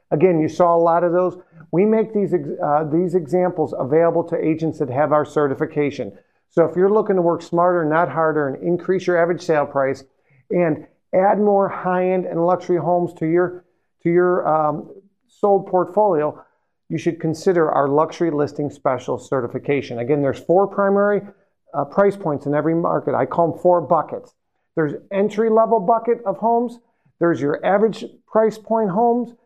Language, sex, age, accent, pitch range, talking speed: English, male, 50-69, American, 160-200 Hz, 170 wpm